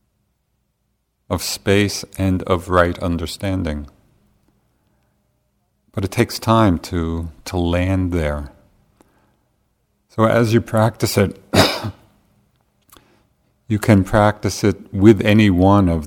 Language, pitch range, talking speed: English, 85-105 Hz, 100 wpm